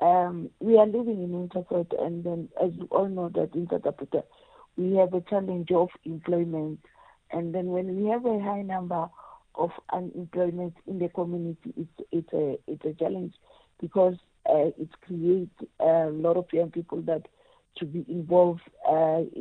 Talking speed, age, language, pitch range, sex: 165 wpm, 50-69, English, 165-180 Hz, female